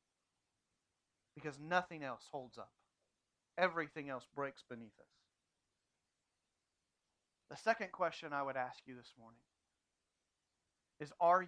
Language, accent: English, American